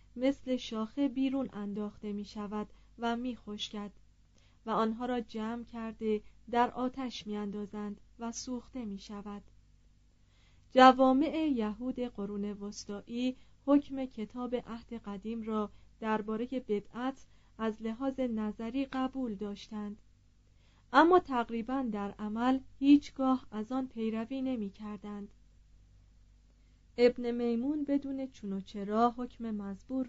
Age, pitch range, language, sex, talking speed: 30-49, 205-255 Hz, Persian, female, 110 wpm